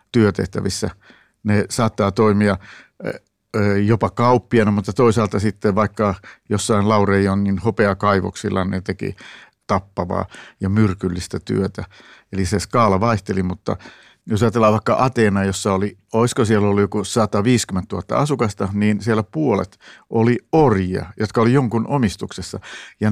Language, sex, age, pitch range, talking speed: Finnish, male, 60-79, 100-120 Hz, 125 wpm